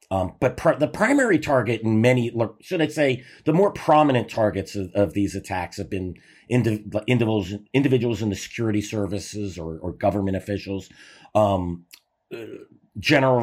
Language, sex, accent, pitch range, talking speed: English, male, American, 95-120 Hz, 140 wpm